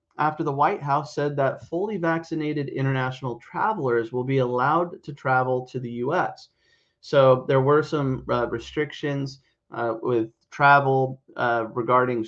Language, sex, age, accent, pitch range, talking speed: English, male, 30-49, American, 120-140 Hz, 140 wpm